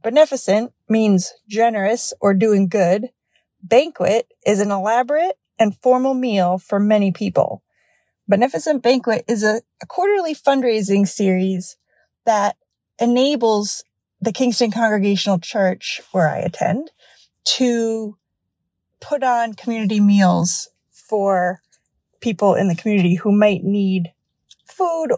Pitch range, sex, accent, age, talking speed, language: 190-240 Hz, female, American, 30-49, 110 wpm, English